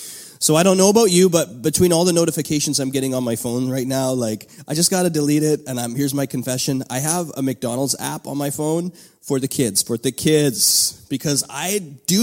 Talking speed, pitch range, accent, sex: 225 wpm, 135-170 Hz, American, male